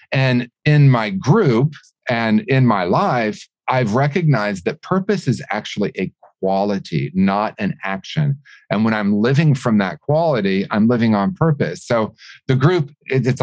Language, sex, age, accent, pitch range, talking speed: English, male, 40-59, American, 105-140 Hz, 150 wpm